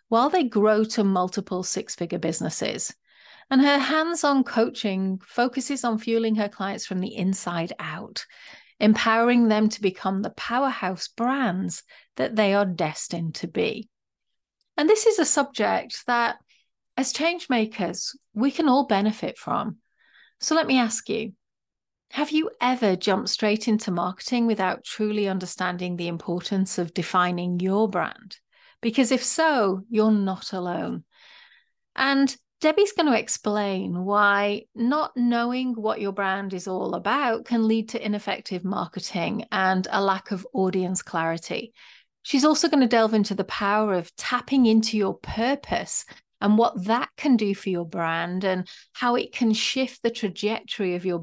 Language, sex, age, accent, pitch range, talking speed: English, female, 40-59, British, 190-245 Hz, 150 wpm